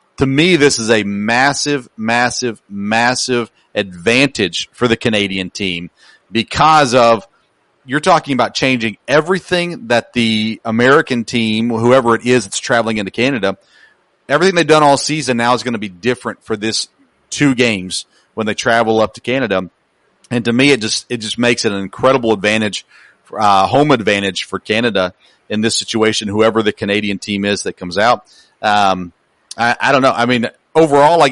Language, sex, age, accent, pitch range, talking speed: English, male, 40-59, American, 105-130 Hz, 170 wpm